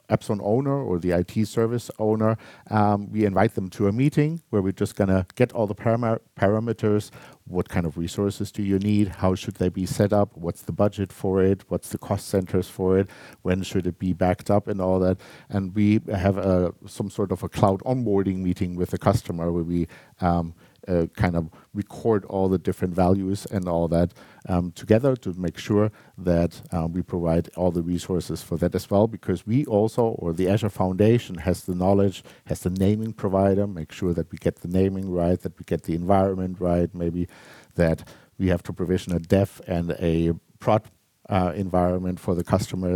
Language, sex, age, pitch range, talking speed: German, male, 50-69, 90-105 Hz, 195 wpm